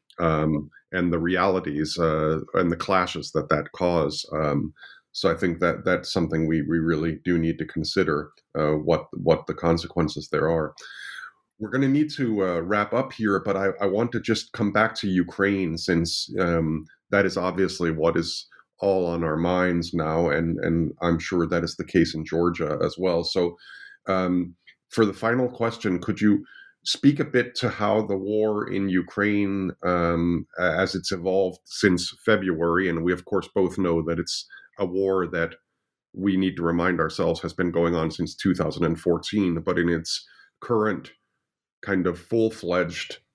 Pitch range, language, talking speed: 85-95 Hz, English, 175 wpm